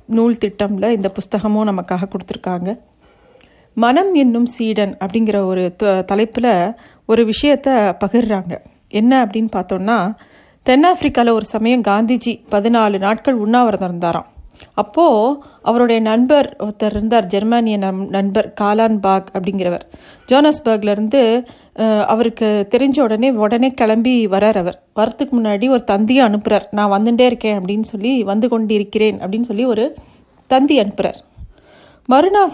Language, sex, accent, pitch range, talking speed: Tamil, female, native, 215-260 Hz, 120 wpm